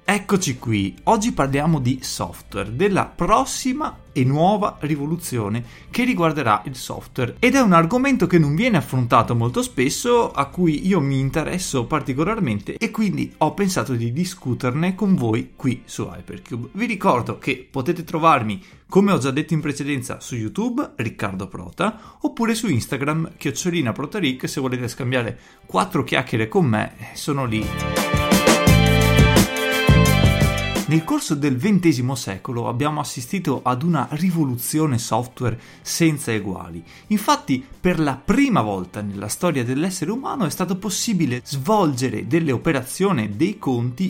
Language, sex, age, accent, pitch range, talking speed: Italian, male, 30-49, native, 125-185 Hz, 135 wpm